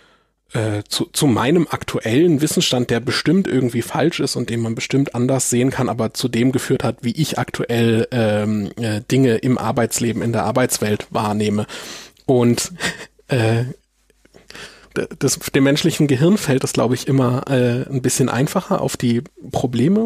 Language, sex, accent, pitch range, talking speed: German, male, German, 120-145 Hz, 155 wpm